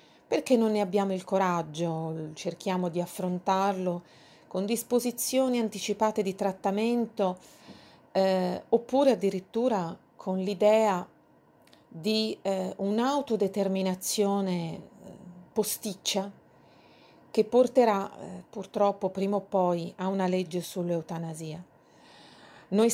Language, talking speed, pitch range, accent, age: Italian, 90 wpm, 185-225 Hz, native, 40-59